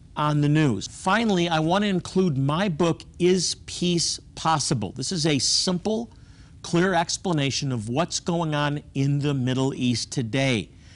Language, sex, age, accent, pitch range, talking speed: English, male, 50-69, American, 125-160 Hz, 155 wpm